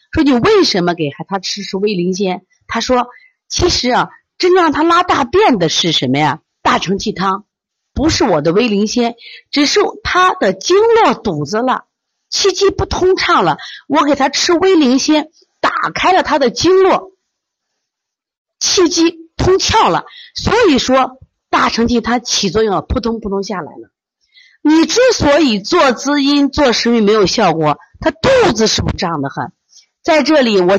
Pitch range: 190-310 Hz